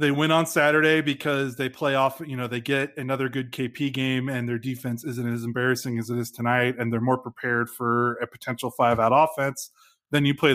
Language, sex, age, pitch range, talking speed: English, male, 20-39, 120-145 Hz, 220 wpm